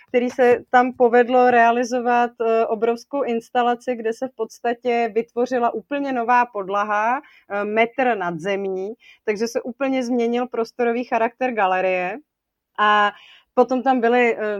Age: 30-49